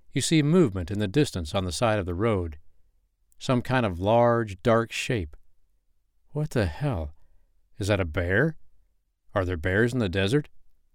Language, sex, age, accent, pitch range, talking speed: English, male, 60-79, American, 80-115 Hz, 170 wpm